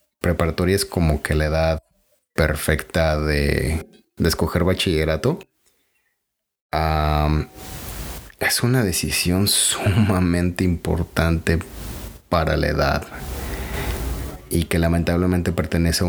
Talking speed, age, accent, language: 95 wpm, 30-49, Mexican, Spanish